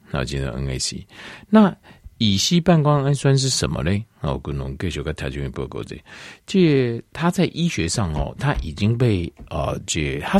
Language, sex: Chinese, male